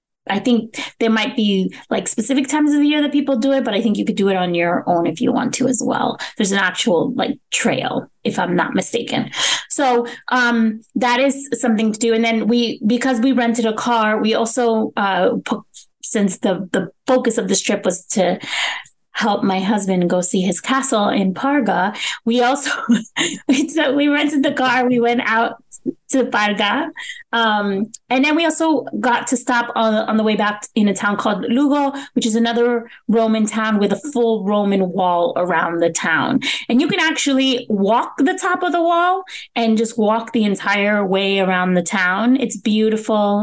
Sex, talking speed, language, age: female, 190 wpm, English, 20-39